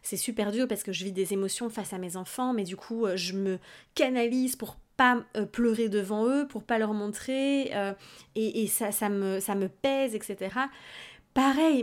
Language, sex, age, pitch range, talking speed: French, female, 30-49, 200-235 Hz, 200 wpm